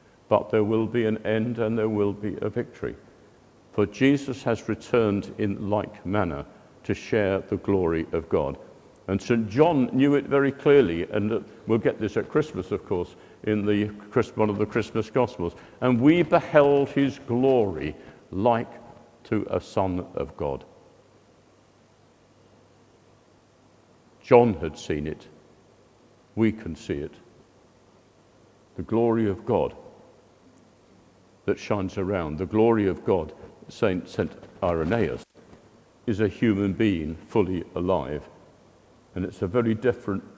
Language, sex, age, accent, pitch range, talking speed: English, male, 50-69, British, 95-120 Hz, 135 wpm